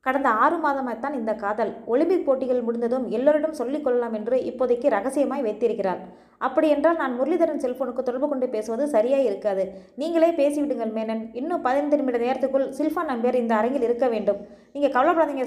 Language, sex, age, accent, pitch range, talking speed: Tamil, female, 20-39, native, 240-305 Hz, 145 wpm